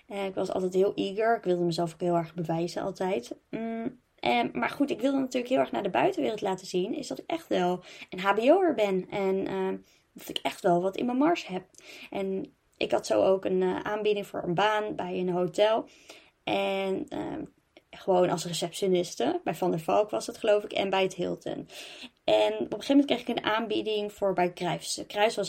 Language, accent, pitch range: Dutch, Dutch, 180-215 Hz